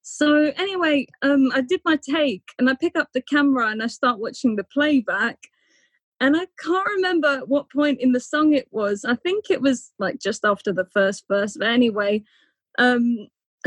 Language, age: English, 20-39